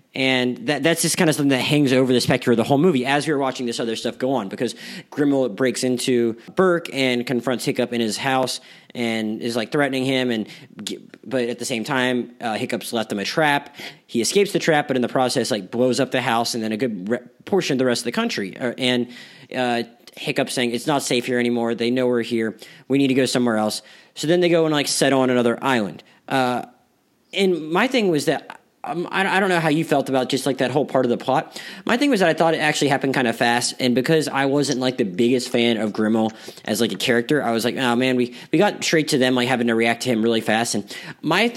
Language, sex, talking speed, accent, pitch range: English, male, 255 wpm, American, 120-150 Hz